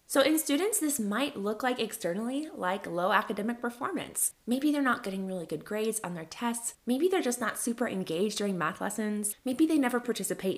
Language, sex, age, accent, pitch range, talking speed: English, female, 20-39, American, 190-245 Hz, 200 wpm